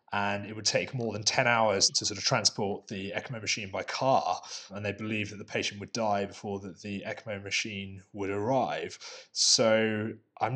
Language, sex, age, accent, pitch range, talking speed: English, male, 20-39, British, 100-120 Hz, 195 wpm